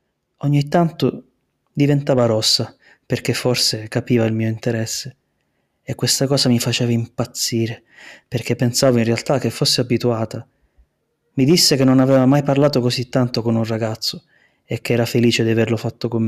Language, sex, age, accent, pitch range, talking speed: Italian, male, 20-39, native, 115-135 Hz, 160 wpm